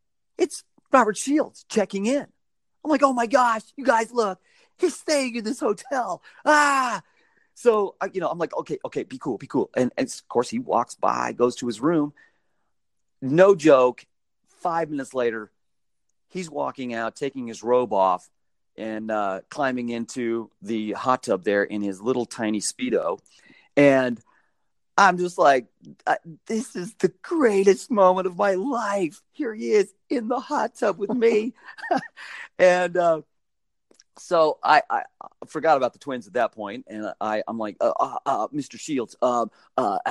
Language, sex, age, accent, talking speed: English, male, 40-59, American, 165 wpm